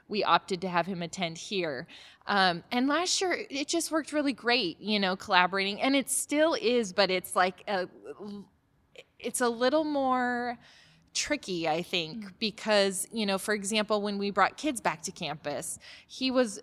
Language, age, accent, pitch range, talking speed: English, 20-39, American, 185-245 Hz, 175 wpm